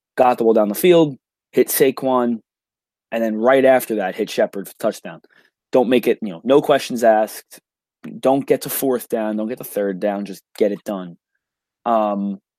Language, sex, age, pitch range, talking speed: English, male, 20-39, 105-130 Hz, 190 wpm